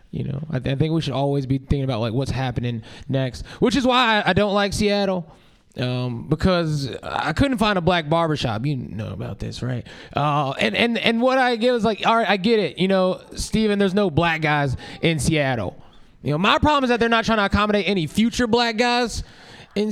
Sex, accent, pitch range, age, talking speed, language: male, American, 140-200 Hz, 20-39, 225 wpm, English